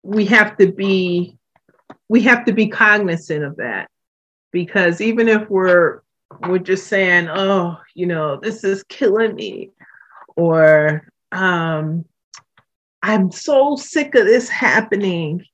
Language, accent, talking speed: English, American, 125 wpm